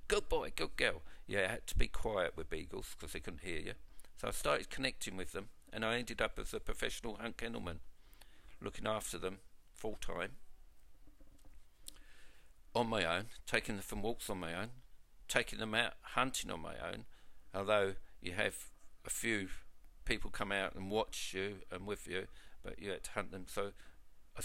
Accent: British